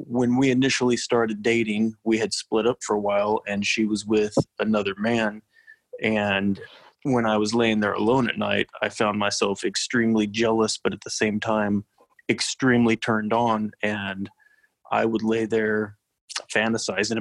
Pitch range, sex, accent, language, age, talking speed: 105-115 Hz, male, American, English, 30-49, 160 wpm